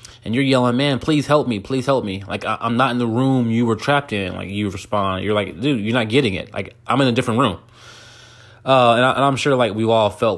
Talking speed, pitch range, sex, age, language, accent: 270 wpm, 105-125 Hz, male, 20-39, English, American